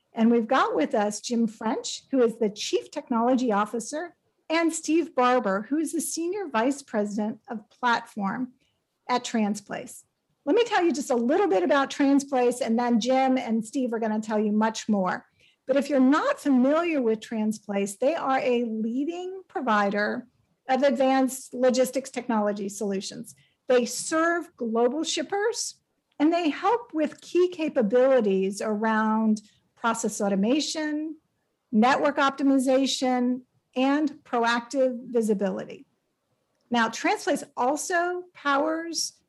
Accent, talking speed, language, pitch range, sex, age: American, 130 wpm, English, 225-290 Hz, female, 50-69